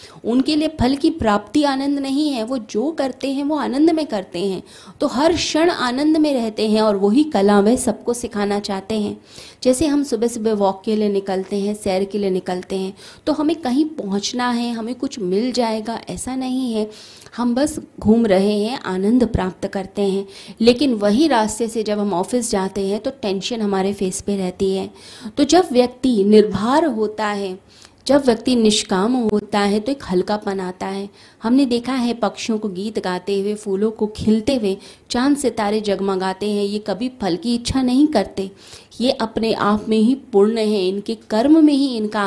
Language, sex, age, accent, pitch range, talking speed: Hindi, female, 20-39, native, 200-255 Hz, 190 wpm